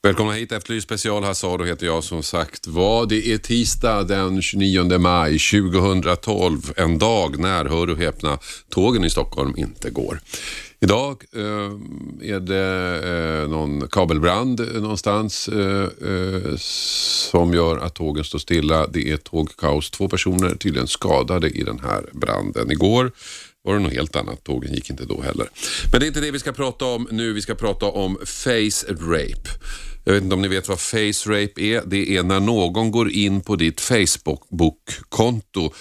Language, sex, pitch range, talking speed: Swedish, male, 80-105 Hz, 160 wpm